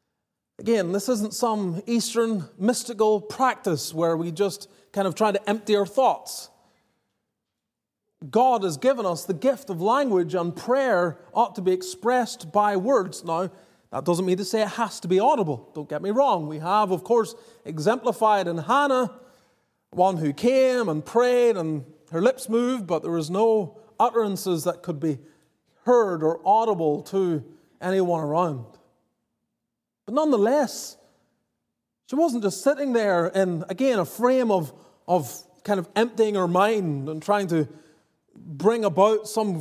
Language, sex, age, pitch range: English, male, 30-49, 170-230 Hz